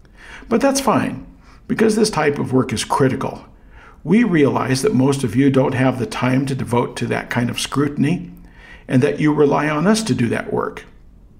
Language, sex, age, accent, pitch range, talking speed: English, male, 50-69, American, 130-160 Hz, 195 wpm